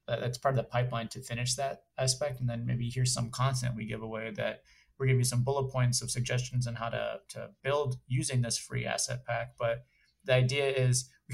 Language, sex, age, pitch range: English, male, 30-49, 120-135 Hz